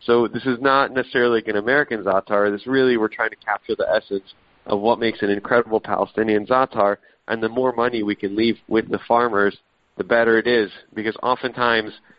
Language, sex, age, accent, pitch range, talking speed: English, male, 40-59, American, 100-120 Hz, 195 wpm